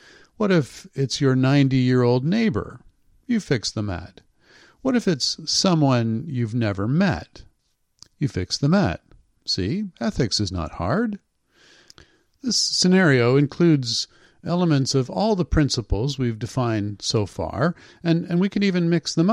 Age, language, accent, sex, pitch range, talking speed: 50-69, English, American, male, 110-160 Hz, 140 wpm